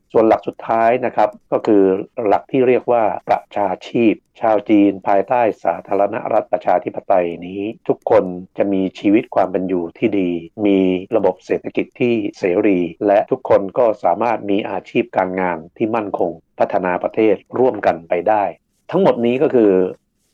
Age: 60-79